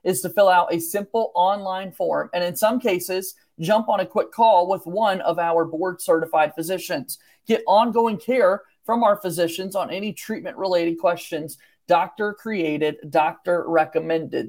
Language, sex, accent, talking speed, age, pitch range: English, male, American, 145 wpm, 40-59, 170-220 Hz